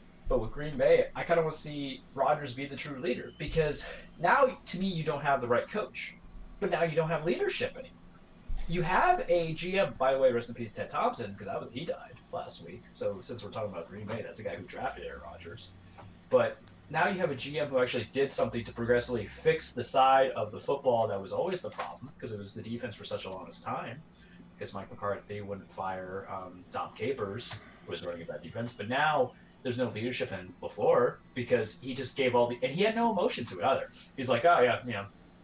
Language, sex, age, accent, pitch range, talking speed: English, male, 20-39, American, 115-175 Hz, 235 wpm